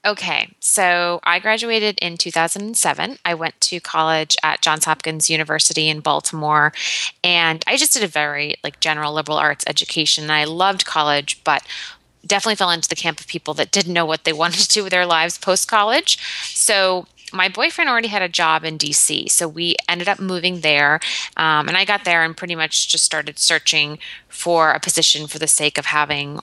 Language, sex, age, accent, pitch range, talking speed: English, female, 20-39, American, 155-185 Hz, 190 wpm